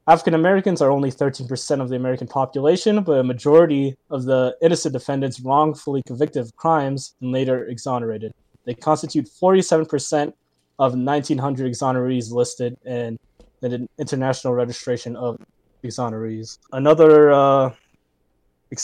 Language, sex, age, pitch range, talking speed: English, male, 20-39, 125-155 Hz, 125 wpm